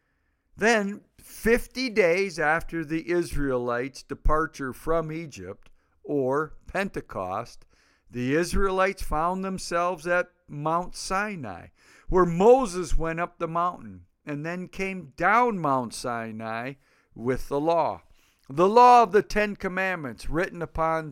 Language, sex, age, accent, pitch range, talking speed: English, male, 50-69, American, 135-185 Hz, 115 wpm